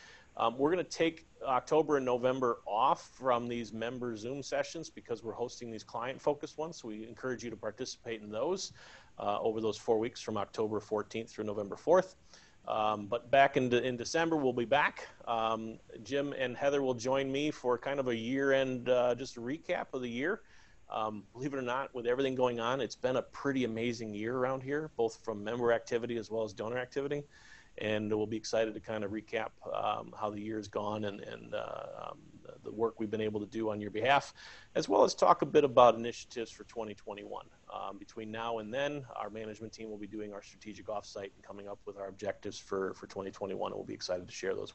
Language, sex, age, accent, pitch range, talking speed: English, male, 40-59, American, 110-135 Hz, 215 wpm